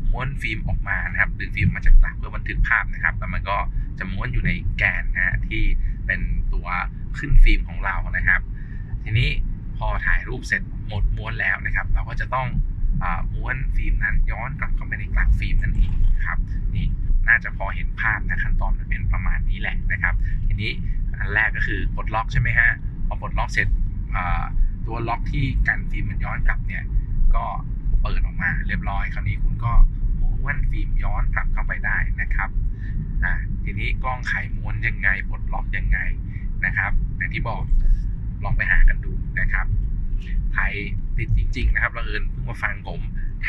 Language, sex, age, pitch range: Thai, male, 20-39, 95-115 Hz